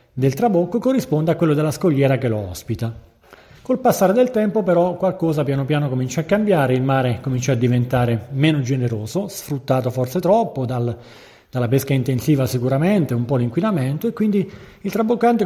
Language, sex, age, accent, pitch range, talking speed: Italian, male, 40-59, native, 130-175 Hz, 165 wpm